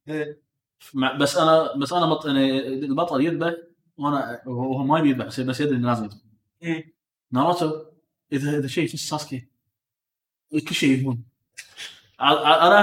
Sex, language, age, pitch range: male, Arabic, 20-39, 125-175 Hz